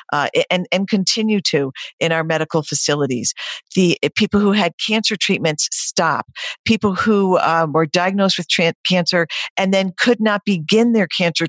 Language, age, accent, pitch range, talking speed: English, 50-69, American, 165-210 Hz, 165 wpm